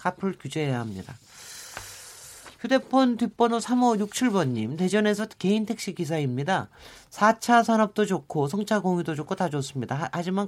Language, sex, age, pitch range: Korean, male, 40-59, 140-205 Hz